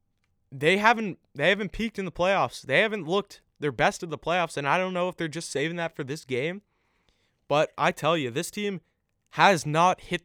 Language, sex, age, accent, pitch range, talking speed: English, male, 20-39, American, 125-165 Hz, 215 wpm